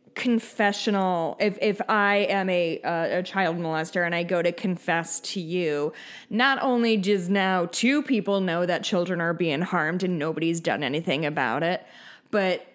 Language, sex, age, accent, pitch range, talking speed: English, female, 20-39, American, 180-235 Hz, 170 wpm